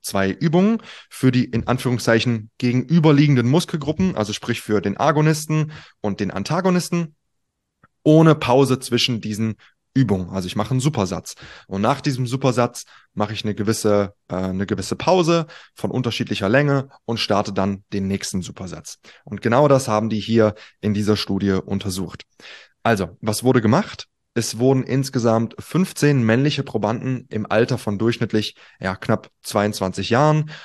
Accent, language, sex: German, German, male